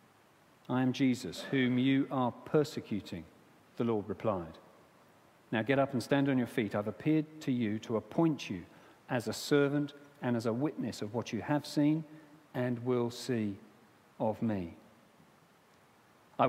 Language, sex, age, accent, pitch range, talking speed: English, male, 50-69, British, 120-165 Hz, 155 wpm